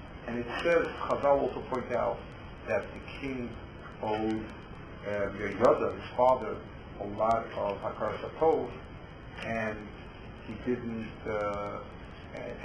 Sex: male